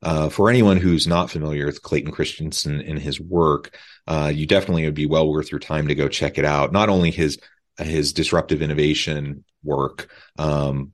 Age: 30-49